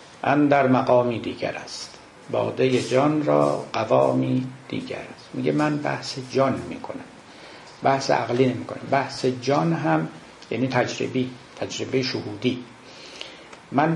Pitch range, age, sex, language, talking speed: 120-145 Hz, 60-79, male, Persian, 125 wpm